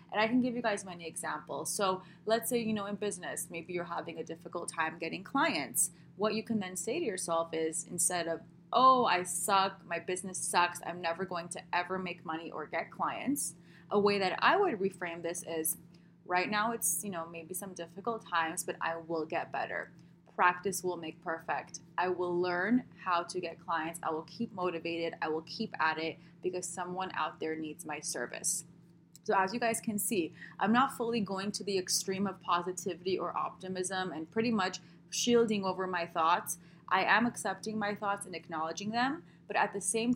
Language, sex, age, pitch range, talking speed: English, female, 20-39, 170-205 Hz, 200 wpm